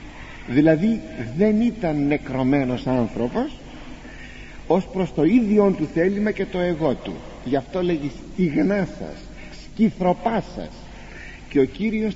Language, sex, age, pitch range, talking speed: Greek, male, 50-69, 125-180 Hz, 125 wpm